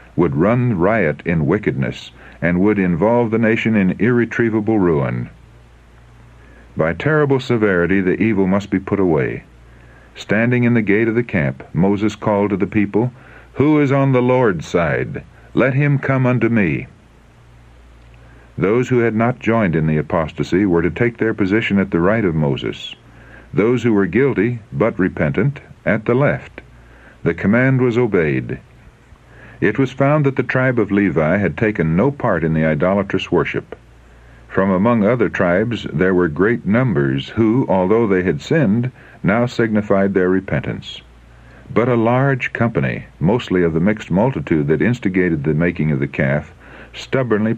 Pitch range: 75-115 Hz